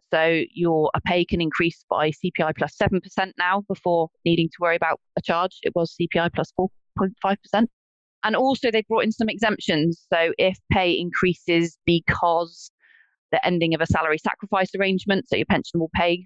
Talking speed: 175 wpm